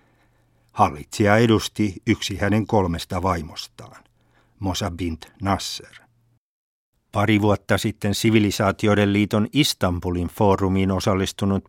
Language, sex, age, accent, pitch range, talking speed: Finnish, male, 60-79, native, 85-105 Hz, 85 wpm